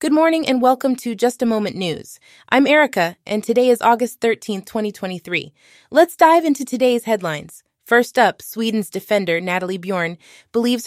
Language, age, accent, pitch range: English, 20-39, American, 205-260 Hz